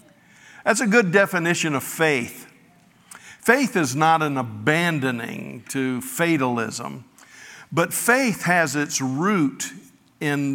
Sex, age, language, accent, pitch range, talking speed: male, 50-69, English, American, 130-165 Hz, 110 wpm